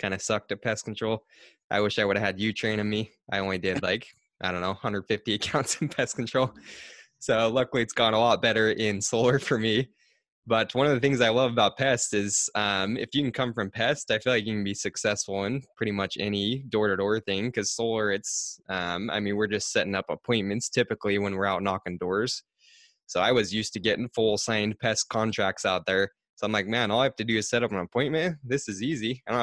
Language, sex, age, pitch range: English, male, 20-39, 100-120 Hz